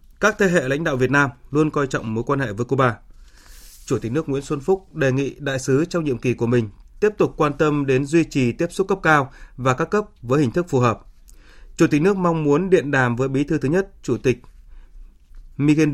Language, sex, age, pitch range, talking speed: Vietnamese, male, 20-39, 125-155 Hz, 240 wpm